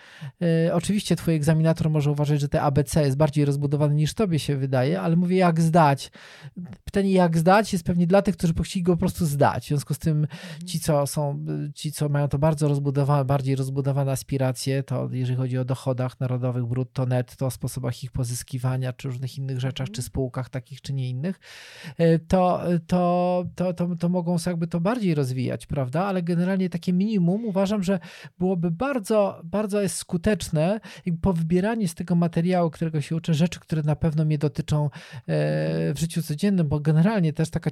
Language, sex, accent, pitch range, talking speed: Polish, male, native, 140-175 Hz, 180 wpm